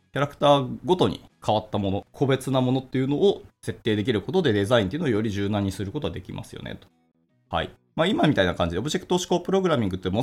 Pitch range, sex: 90-135 Hz, male